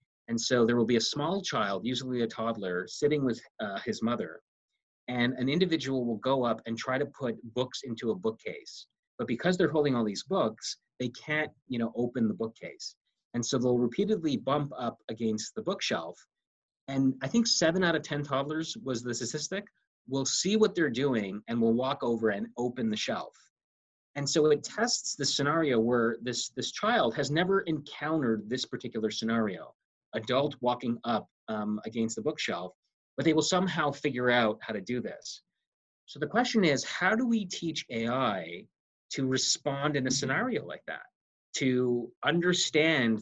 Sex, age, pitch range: male, 30-49, 115-145 Hz